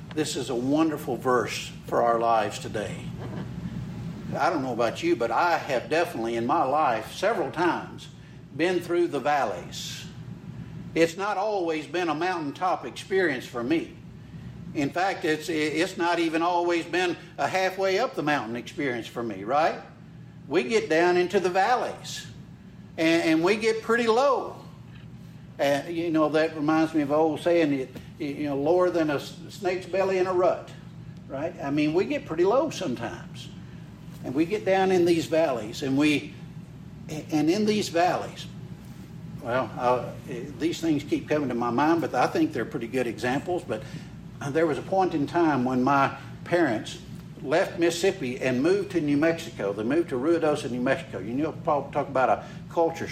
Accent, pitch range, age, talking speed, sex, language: American, 140-180 Hz, 60-79, 170 wpm, male, English